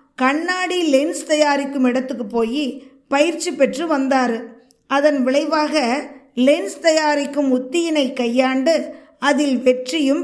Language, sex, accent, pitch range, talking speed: Tamil, female, native, 260-310 Hz, 95 wpm